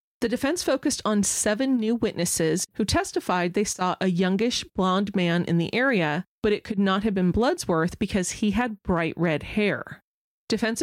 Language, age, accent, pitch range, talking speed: English, 30-49, American, 175-225 Hz, 175 wpm